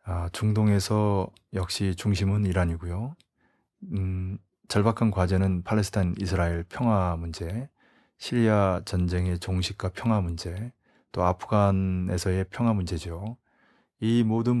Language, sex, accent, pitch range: Korean, male, native, 90-110 Hz